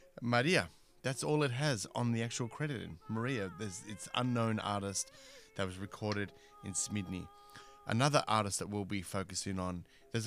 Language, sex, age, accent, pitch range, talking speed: English, male, 30-49, Australian, 95-120 Hz, 160 wpm